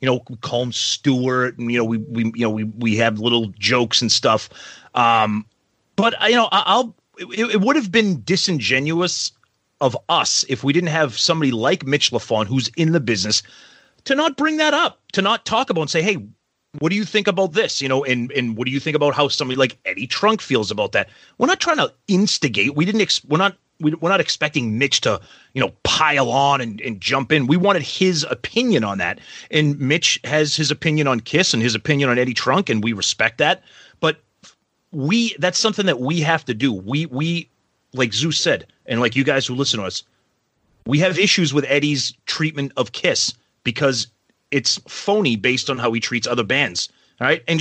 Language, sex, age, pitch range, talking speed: English, male, 30-49, 120-185 Hz, 215 wpm